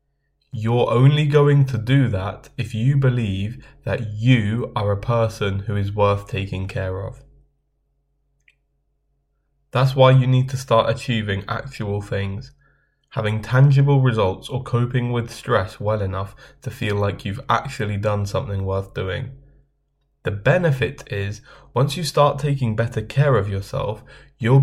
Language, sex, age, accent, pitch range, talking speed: English, male, 10-29, British, 105-135 Hz, 145 wpm